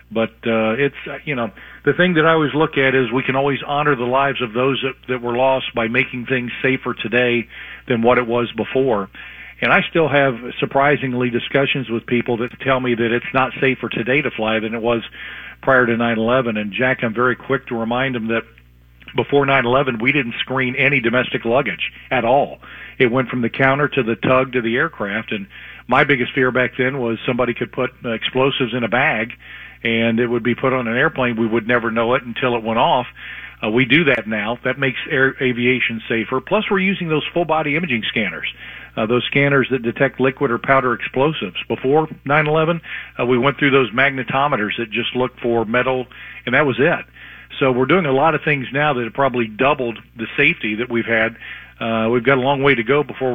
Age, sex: 40-59, male